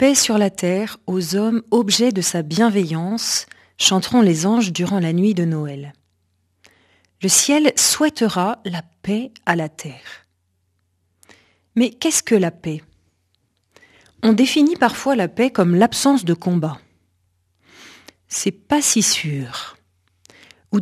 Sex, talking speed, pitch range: female, 135 wpm, 140-225 Hz